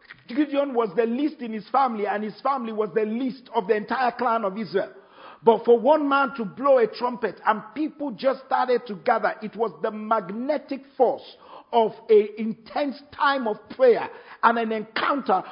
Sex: male